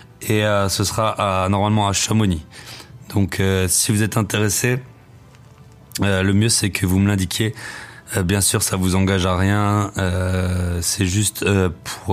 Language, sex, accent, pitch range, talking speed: French, male, French, 95-105 Hz, 180 wpm